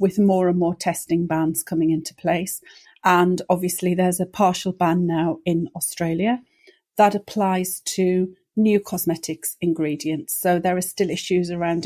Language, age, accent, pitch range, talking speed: English, 40-59, British, 165-195 Hz, 150 wpm